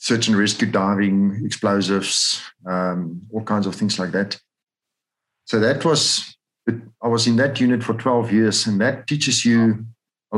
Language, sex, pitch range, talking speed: English, male, 100-115 Hz, 160 wpm